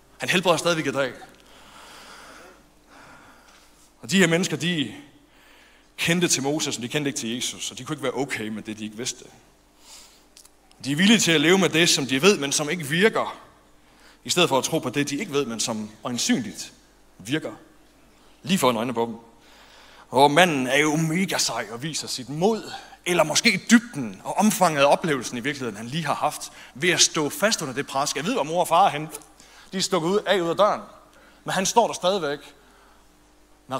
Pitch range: 115-170 Hz